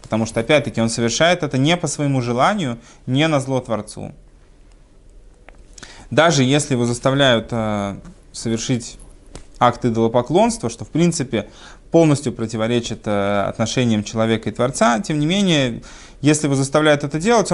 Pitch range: 110-145 Hz